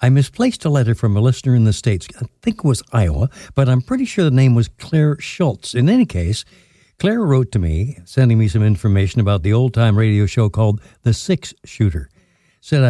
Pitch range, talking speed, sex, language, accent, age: 100-130 Hz, 210 wpm, male, English, American, 60-79